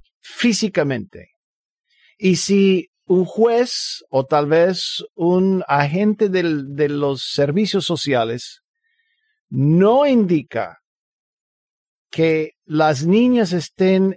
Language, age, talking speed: Spanish, 50-69, 90 wpm